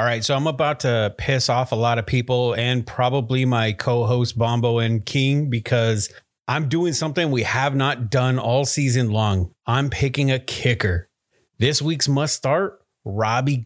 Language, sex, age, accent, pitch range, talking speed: English, male, 30-49, American, 115-145 Hz, 170 wpm